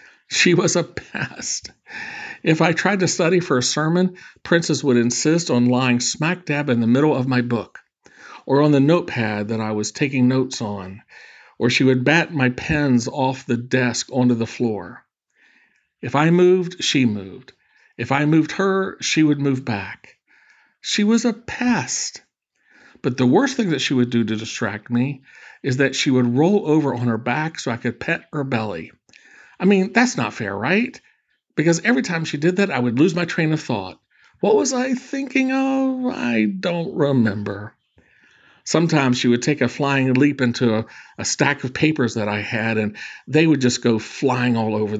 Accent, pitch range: American, 120-165 Hz